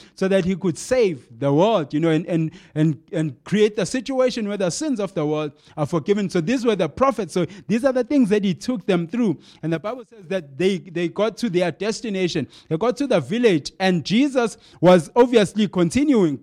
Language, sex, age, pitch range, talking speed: English, male, 30-49, 165-215 Hz, 220 wpm